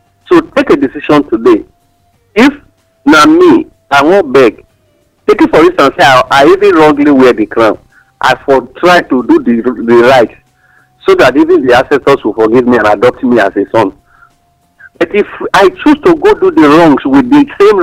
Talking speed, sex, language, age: 190 wpm, male, English, 50-69